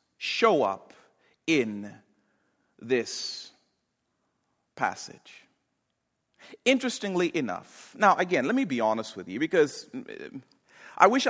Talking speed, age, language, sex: 95 wpm, 40-59, English, male